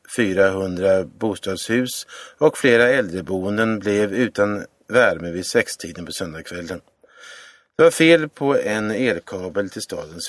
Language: Swedish